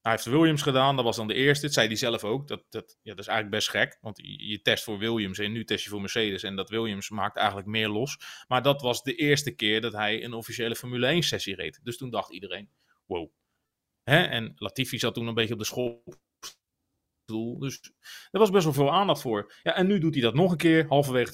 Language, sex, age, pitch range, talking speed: Dutch, male, 30-49, 120-155 Hz, 245 wpm